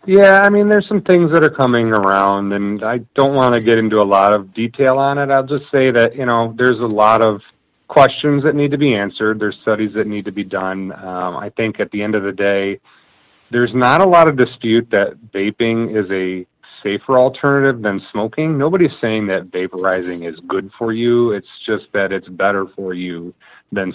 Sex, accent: male, American